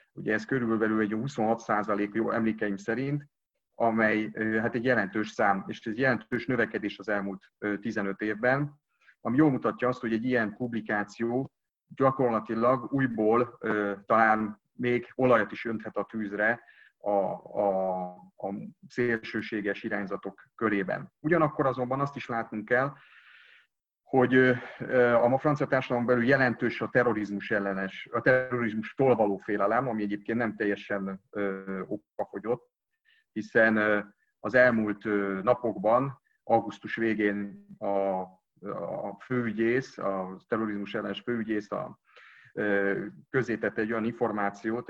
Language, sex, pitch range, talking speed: English, male, 105-125 Hz, 115 wpm